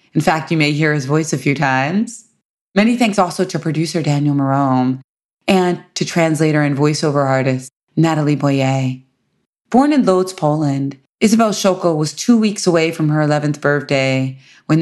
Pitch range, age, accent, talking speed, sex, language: 135-175 Hz, 20-39, American, 160 wpm, female, English